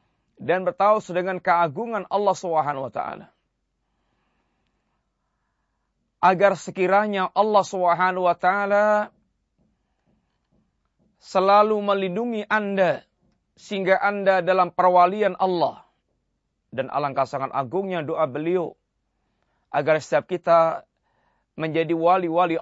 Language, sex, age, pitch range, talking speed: Malay, male, 30-49, 165-185 Hz, 75 wpm